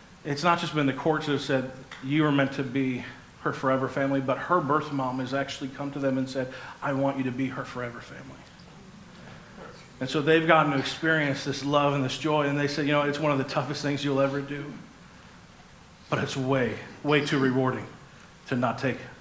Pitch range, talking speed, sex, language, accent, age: 130-150 Hz, 220 wpm, male, English, American, 40-59